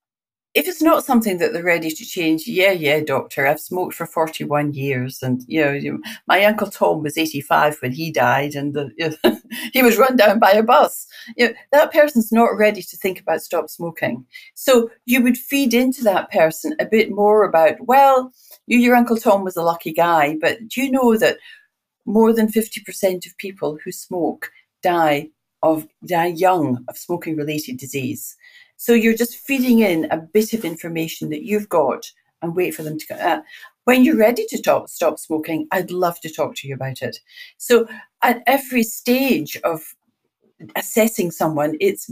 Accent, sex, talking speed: British, female, 190 wpm